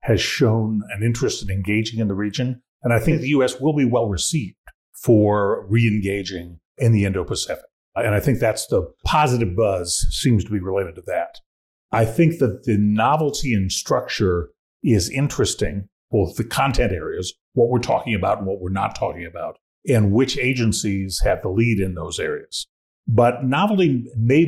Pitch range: 105-130 Hz